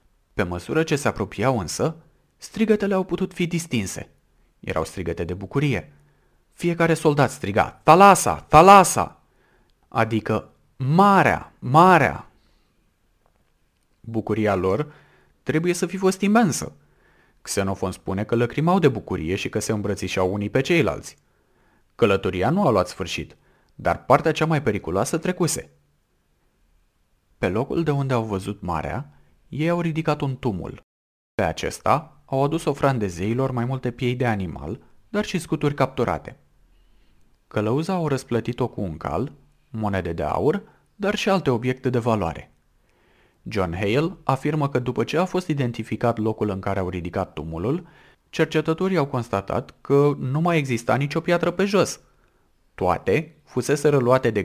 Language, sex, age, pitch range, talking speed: Romanian, male, 30-49, 100-155 Hz, 140 wpm